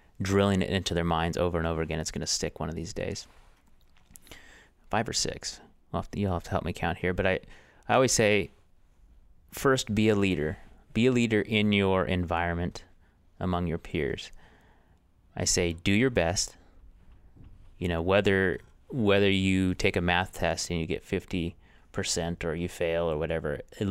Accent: American